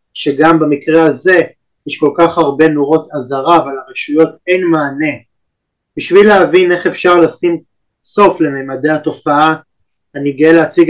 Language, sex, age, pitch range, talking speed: Hebrew, male, 30-49, 135-165 Hz, 130 wpm